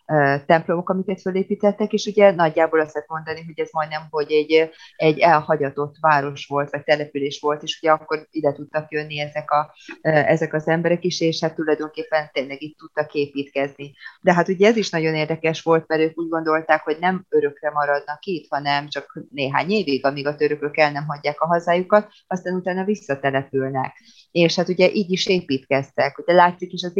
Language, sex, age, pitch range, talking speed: Hungarian, female, 30-49, 150-170 Hz, 180 wpm